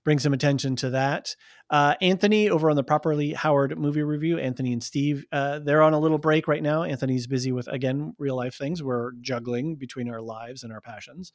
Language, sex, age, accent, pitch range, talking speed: English, male, 30-49, American, 115-150 Hz, 210 wpm